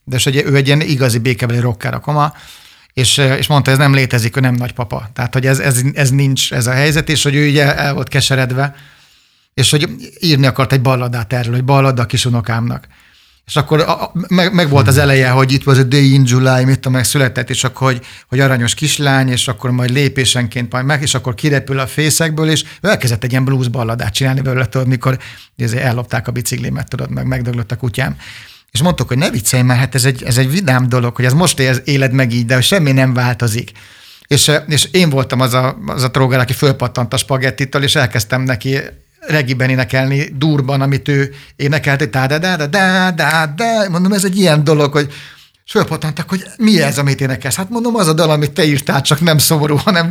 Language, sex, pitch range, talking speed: Hungarian, male, 130-150 Hz, 205 wpm